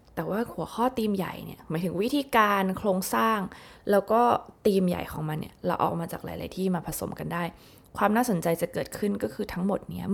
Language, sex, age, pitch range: Thai, female, 20-39, 170-215 Hz